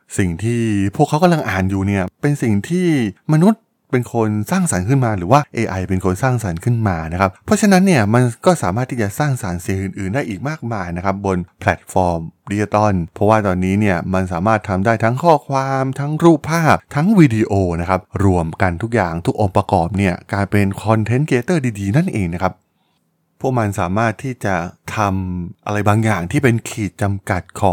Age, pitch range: 20-39, 95-125 Hz